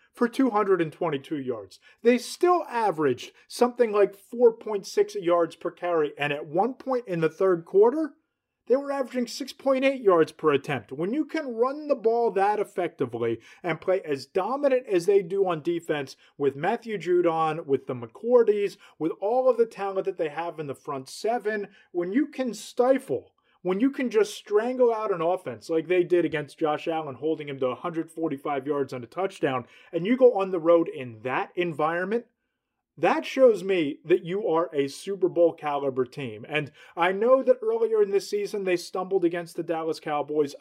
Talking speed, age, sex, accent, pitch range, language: 180 wpm, 30-49, male, American, 160-245 Hz, English